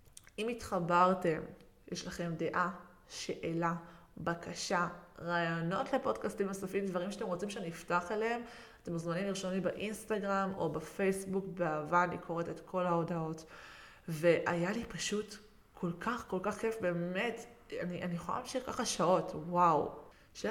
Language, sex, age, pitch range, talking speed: Hebrew, female, 20-39, 170-195 Hz, 135 wpm